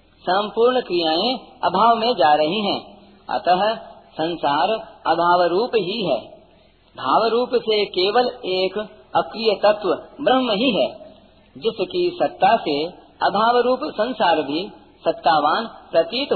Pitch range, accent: 175-240 Hz, native